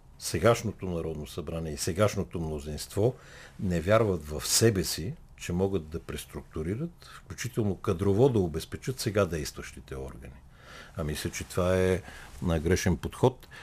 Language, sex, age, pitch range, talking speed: Bulgarian, male, 60-79, 80-95 Hz, 130 wpm